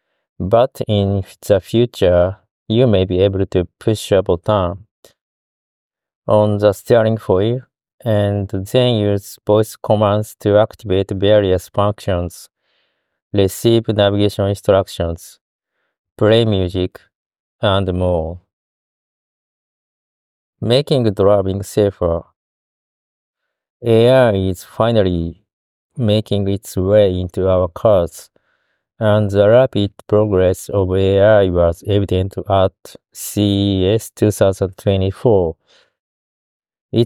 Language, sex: Japanese, male